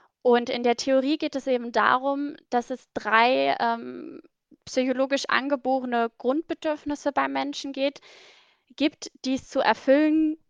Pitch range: 230-275 Hz